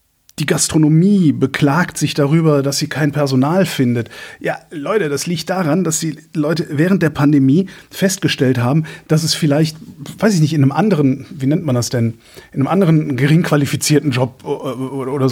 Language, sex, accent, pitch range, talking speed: German, male, German, 135-160 Hz, 170 wpm